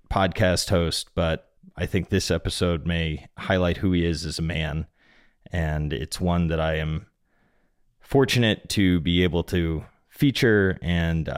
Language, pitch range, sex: English, 85-100 Hz, male